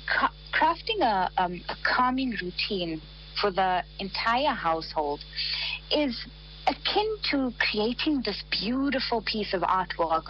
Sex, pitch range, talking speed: female, 170-210 Hz, 110 wpm